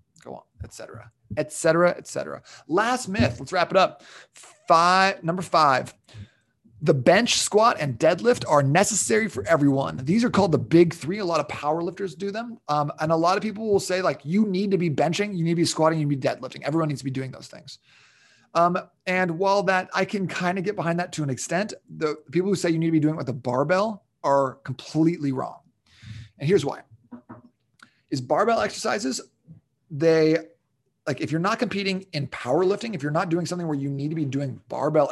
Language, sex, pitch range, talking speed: English, male, 140-185 Hz, 210 wpm